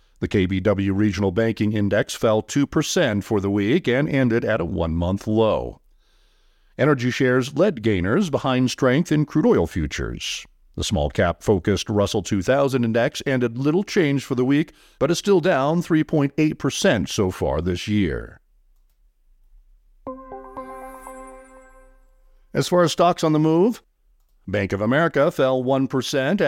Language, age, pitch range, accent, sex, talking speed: English, 50-69, 110-150 Hz, American, male, 130 wpm